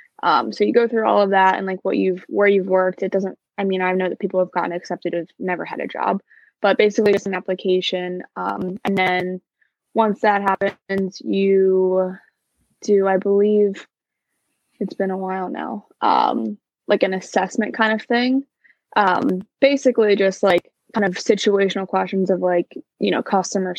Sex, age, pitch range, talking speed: female, 20-39, 180-200 Hz, 180 wpm